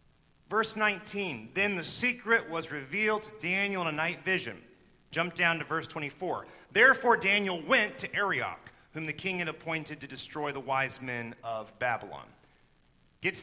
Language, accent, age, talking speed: English, American, 40-59, 160 wpm